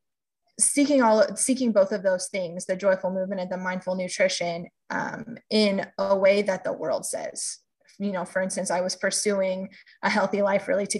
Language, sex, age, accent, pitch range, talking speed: English, female, 20-39, American, 190-240 Hz, 185 wpm